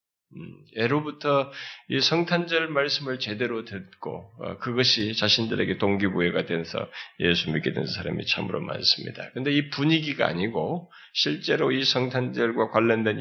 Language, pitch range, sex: Korean, 120-170 Hz, male